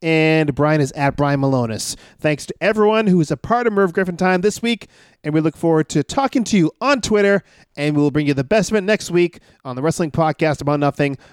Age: 40-59